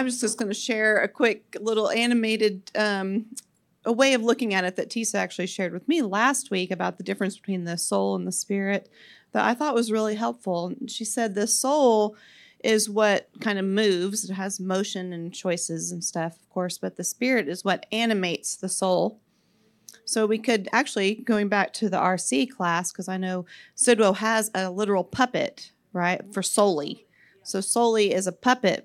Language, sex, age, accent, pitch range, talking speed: English, female, 40-59, American, 185-225 Hz, 190 wpm